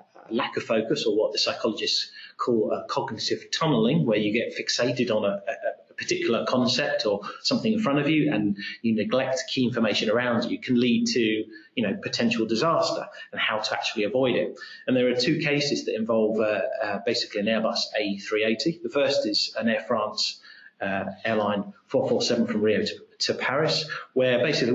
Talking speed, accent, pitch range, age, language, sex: 185 wpm, British, 115-175 Hz, 30-49, English, male